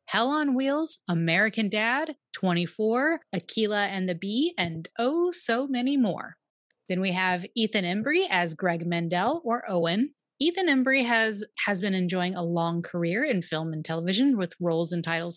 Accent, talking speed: American, 165 wpm